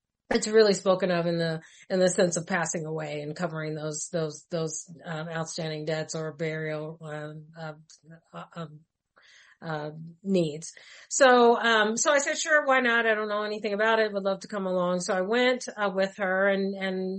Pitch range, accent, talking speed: 170-205 Hz, American, 190 wpm